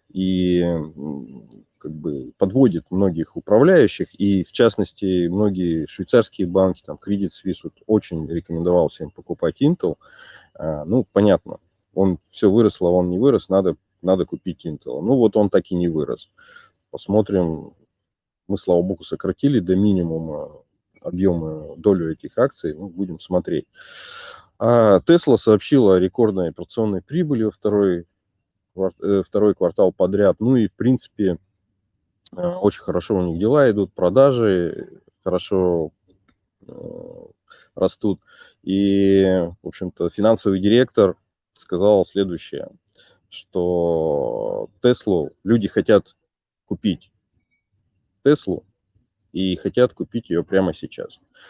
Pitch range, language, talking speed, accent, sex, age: 90-110 Hz, Russian, 115 wpm, native, male, 30-49